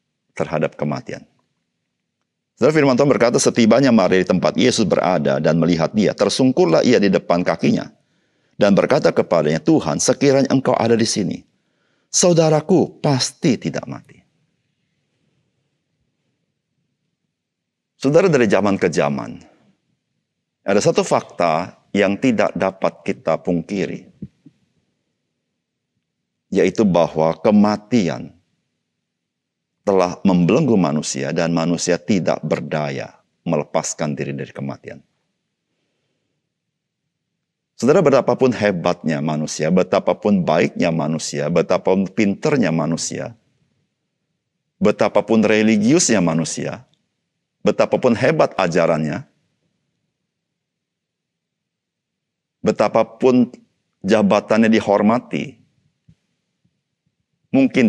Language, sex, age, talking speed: Indonesian, male, 50-69, 85 wpm